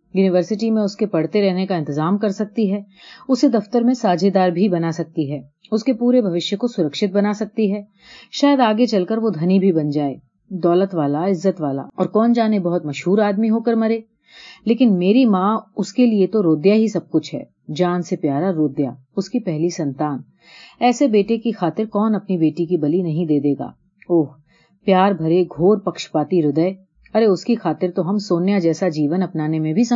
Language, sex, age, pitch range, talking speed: Urdu, female, 40-59, 165-220 Hz, 195 wpm